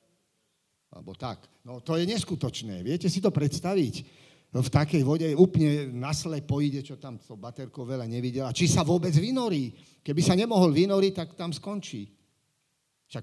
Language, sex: Slovak, male